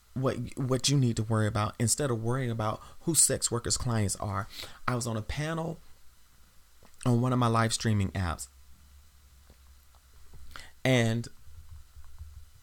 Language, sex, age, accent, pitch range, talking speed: English, male, 30-49, American, 80-120 Hz, 140 wpm